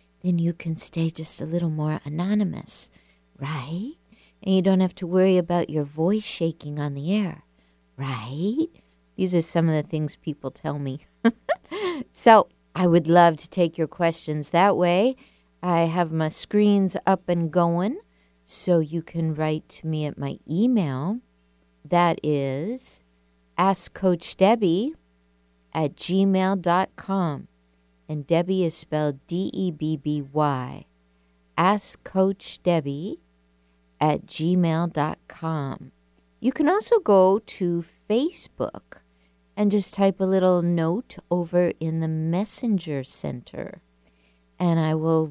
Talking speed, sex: 130 wpm, female